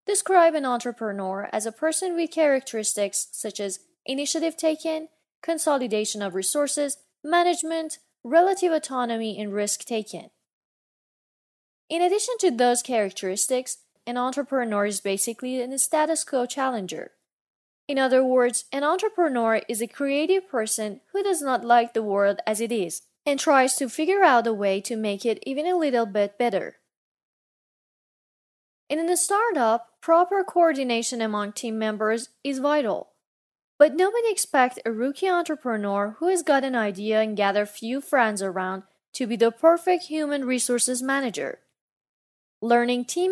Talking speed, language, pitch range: 145 wpm, Persian, 220-310 Hz